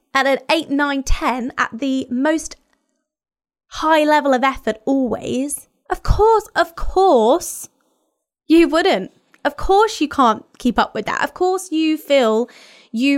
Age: 20-39